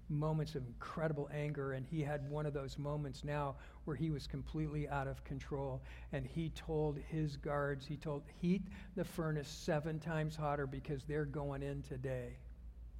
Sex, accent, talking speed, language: male, American, 170 wpm, English